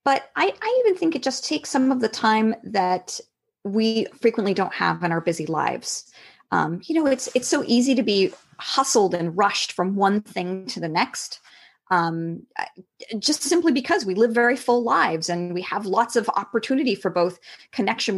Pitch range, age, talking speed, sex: 200-275 Hz, 30-49, 190 wpm, female